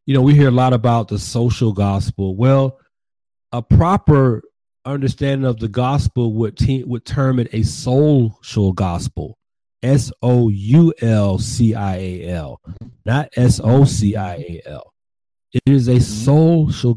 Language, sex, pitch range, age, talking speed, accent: English, male, 105-135 Hz, 40-59, 165 wpm, American